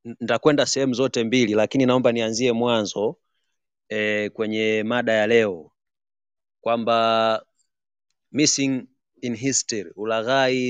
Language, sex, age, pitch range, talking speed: Swahili, male, 30-49, 110-135 Hz, 100 wpm